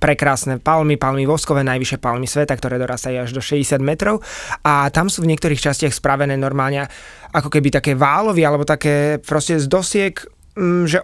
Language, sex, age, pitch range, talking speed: Slovak, male, 20-39, 140-160 Hz, 170 wpm